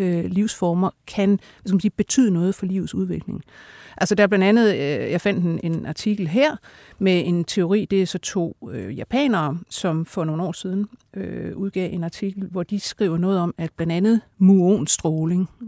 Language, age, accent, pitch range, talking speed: Danish, 60-79, native, 175-215 Hz, 170 wpm